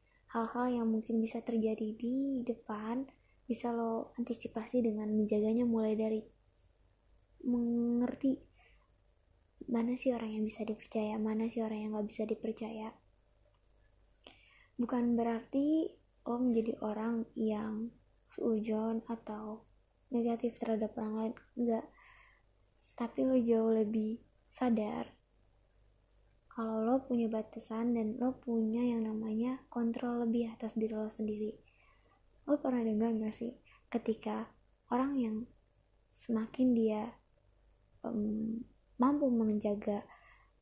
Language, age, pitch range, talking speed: Indonesian, 20-39, 220-240 Hz, 110 wpm